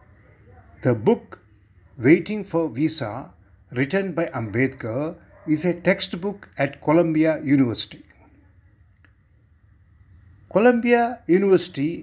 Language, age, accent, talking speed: English, 60-79, Indian, 80 wpm